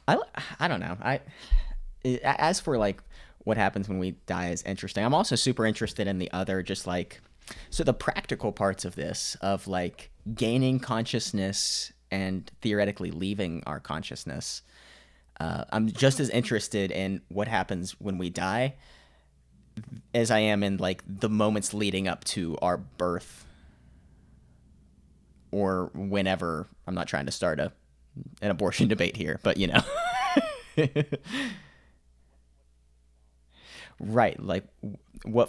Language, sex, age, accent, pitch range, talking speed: English, male, 20-39, American, 85-110 Hz, 135 wpm